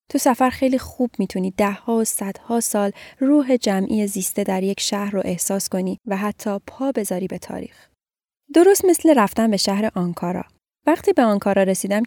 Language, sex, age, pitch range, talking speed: Persian, female, 10-29, 190-255 Hz, 180 wpm